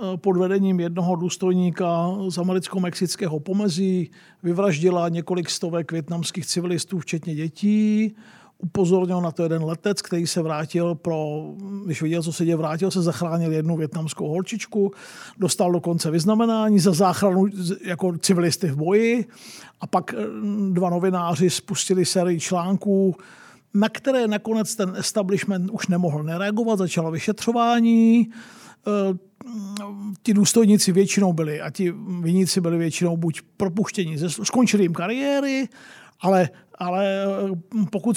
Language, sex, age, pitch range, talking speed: Czech, male, 50-69, 175-210 Hz, 120 wpm